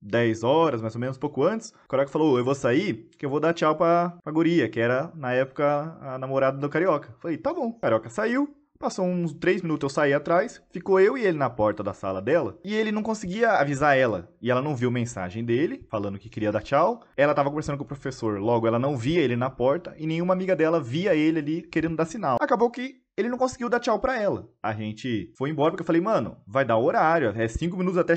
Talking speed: 245 wpm